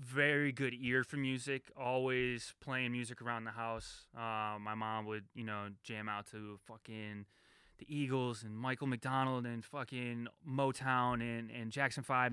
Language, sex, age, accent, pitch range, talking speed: English, male, 20-39, American, 115-135 Hz, 160 wpm